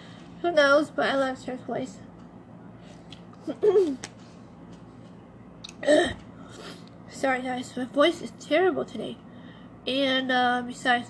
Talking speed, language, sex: 80 wpm, English, female